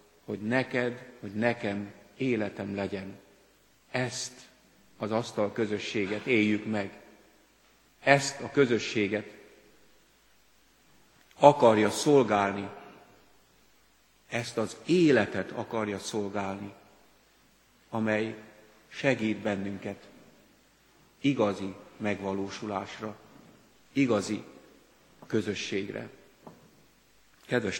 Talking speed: 65 wpm